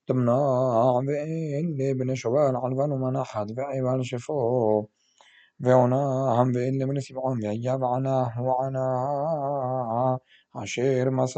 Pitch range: 125-135 Hz